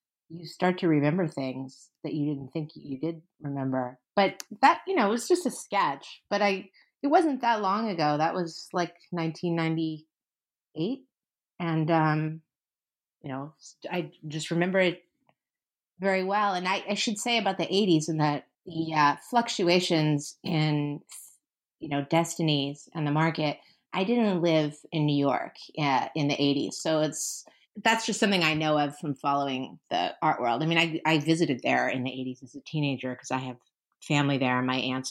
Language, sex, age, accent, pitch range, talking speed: English, female, 30-49, American, 140-180 Hz, 175 wpm